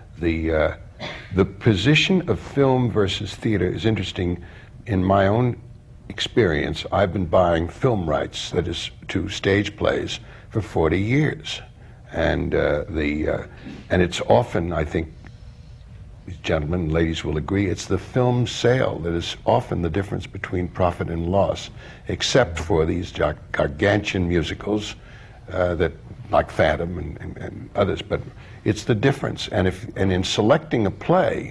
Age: 60-79